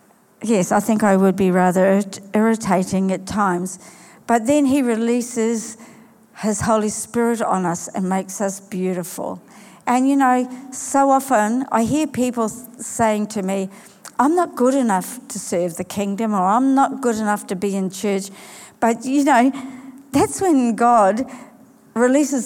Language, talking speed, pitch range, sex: English, 155 wpm, 190-230 Hz, female